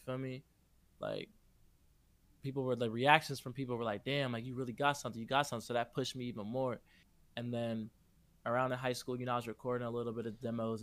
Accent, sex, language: American, male, English